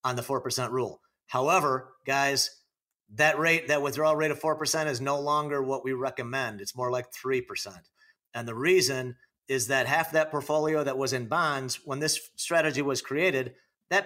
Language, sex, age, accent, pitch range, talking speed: English, male, 40-59, American, 130-165 Hz, 175 wpm